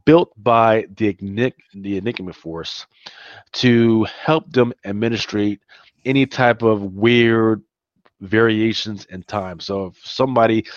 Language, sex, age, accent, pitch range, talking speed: English, male, 20-39, American, 100-125 Hz, 115 wpm